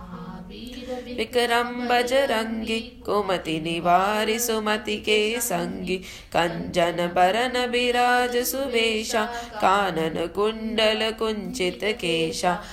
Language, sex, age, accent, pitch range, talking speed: English, female, 20-39, Indian, 180-245 Hz, 70 wpm